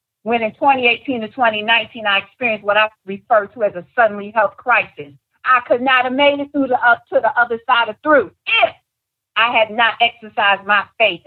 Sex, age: female, 50-69